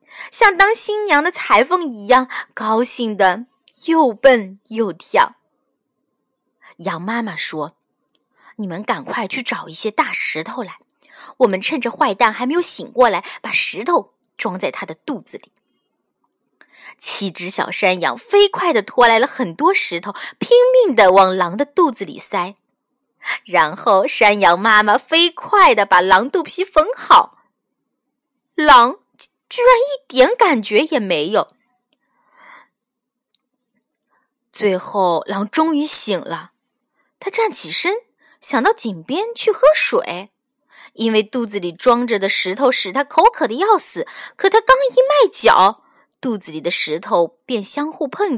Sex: female